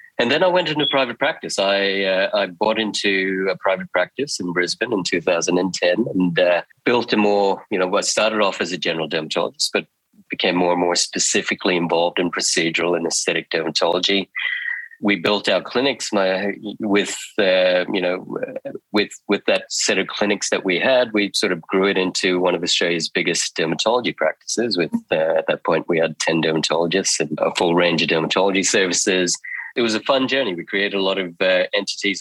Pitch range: 85-105 Hz